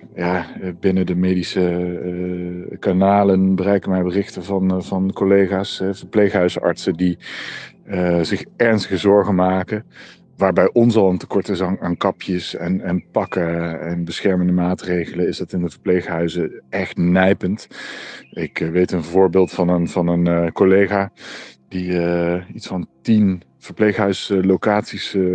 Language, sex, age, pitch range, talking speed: Dutch, male, 40-59, 85-95 Hz, 145 wpm